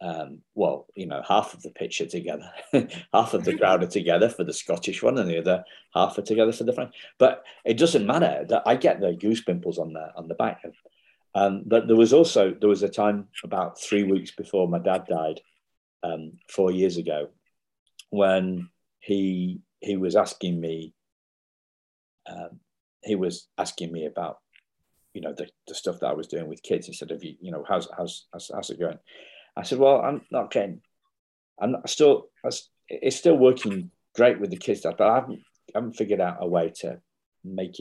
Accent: British